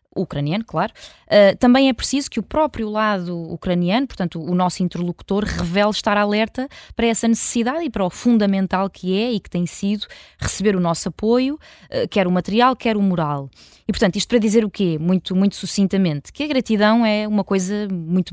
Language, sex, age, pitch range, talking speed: Portuguese, female, 20-39, 175-220 Hz, 185 wpm